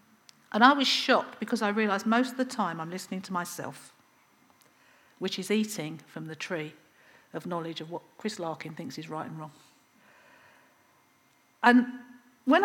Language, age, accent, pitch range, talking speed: English, 50-69, British, 200-260 Hz, 160 wpm